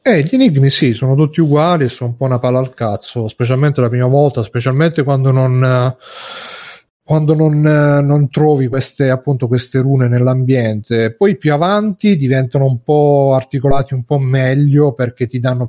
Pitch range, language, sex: 120-145 Hz, Italian, male